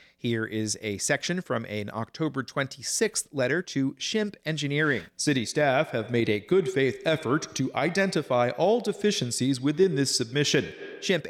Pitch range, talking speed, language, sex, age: 125-175 Hz, 145 wpm, English, male, 40-59